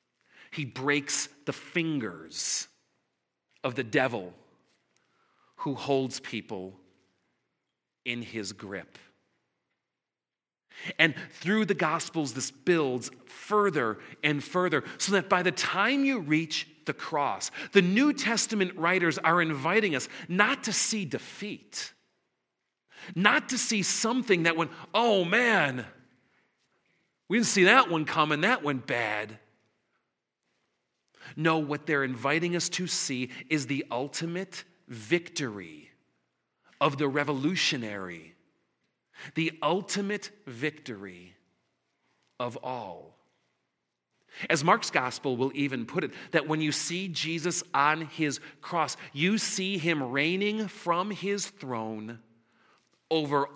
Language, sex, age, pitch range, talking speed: English, male, 40-59, 125-180 Hz, 115 wpm